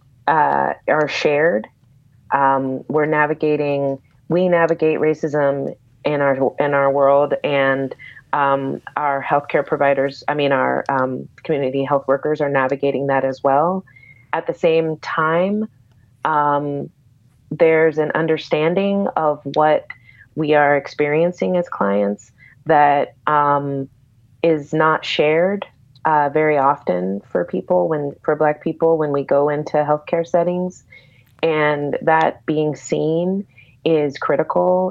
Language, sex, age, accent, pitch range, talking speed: English, female, 30-49, American, 135-160 Hz, 125 wpm